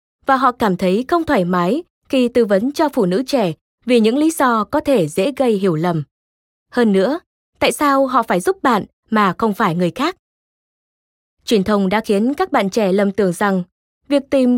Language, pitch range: Vietnamese, 190-265 Hz